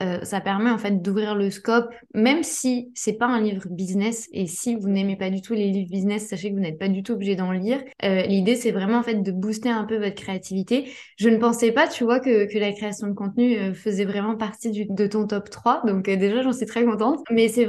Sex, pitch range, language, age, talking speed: female, 200-235 Hz, French, 20-39, 260 wpm